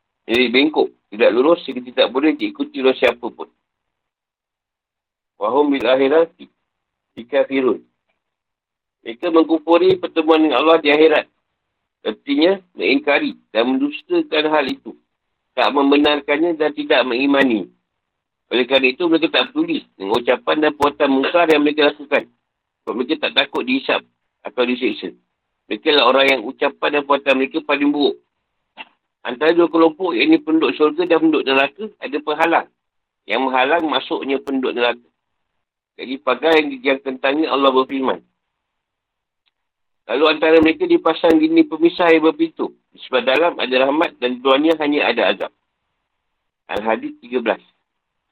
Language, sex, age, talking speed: Malay, male, 50-69, 130 wpm